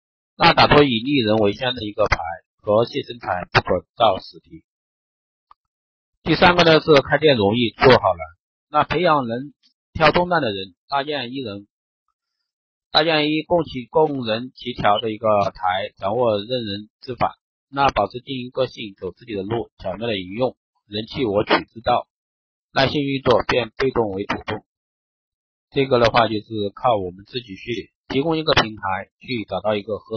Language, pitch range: Chinese, 100-145 Hz